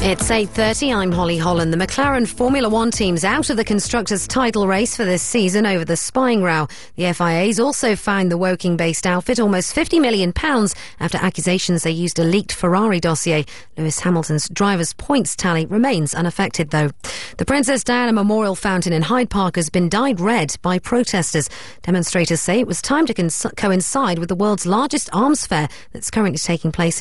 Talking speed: 180 wpm